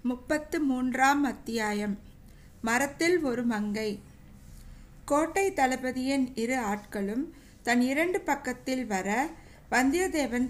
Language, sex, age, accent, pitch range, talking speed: Tamil, female, 60-79, native, 220-275 Hz, 55 wpm